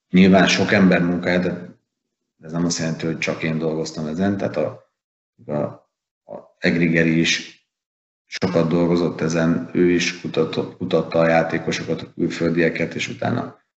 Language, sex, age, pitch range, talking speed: Hungarian, male, 30-49, 80-95 Hz, 145 wpm